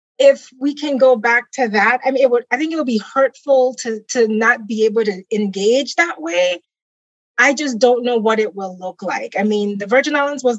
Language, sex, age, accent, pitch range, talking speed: English, female, 30-49, American, 220-270 Hz, 230 wpm